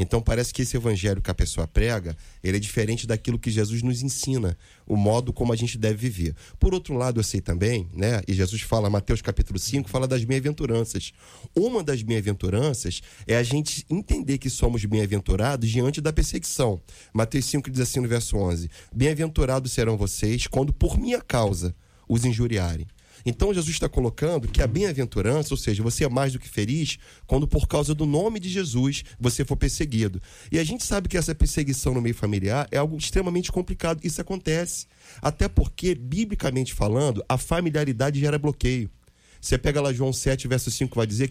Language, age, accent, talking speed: Portuguese, 30-49, Brazilian, 180 wpm